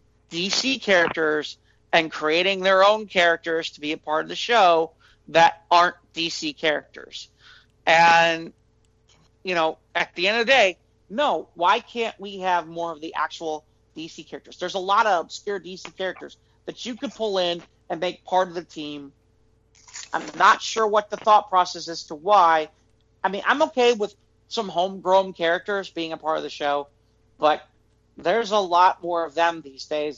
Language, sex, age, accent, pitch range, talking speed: English, male, 40-59, American, 140-195 Hz, 175 wpm